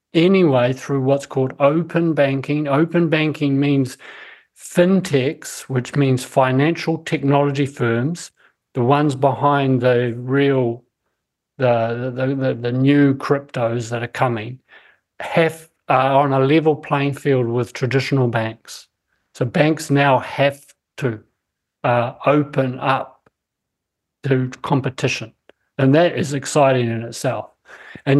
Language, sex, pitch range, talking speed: English, male, 125-145 Hz, 120 wpm